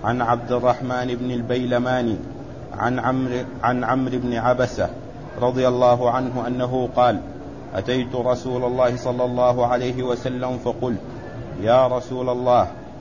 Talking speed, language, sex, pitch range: 125 wpm, Arabic, male, 125-130 Hz